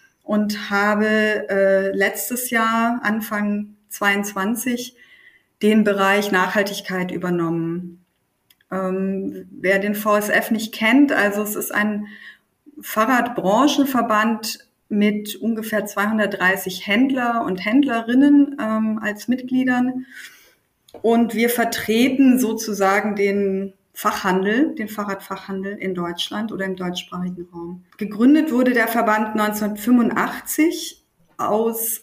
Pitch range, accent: 200-240 Hz, German